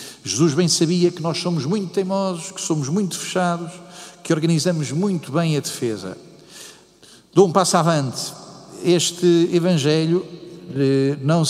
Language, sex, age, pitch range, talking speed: Portuguese, male, 50-69, 140-170 Hz, 130 wpm